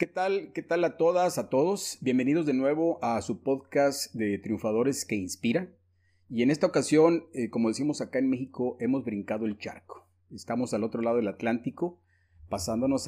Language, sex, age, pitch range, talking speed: Spanish, male, 40-59, 100-130 Hz, 180 wpm